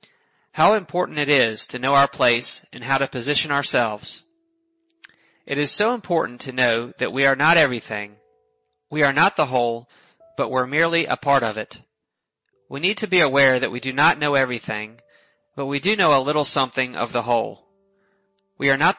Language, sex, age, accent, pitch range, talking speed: English, male, 30-49, American, 125-170 Hz, 190 wpm